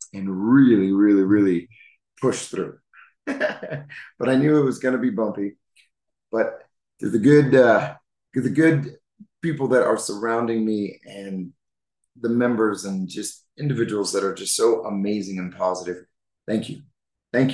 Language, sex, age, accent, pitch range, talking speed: English, male, 30-49, American, 95-135 Hz, 145 wpm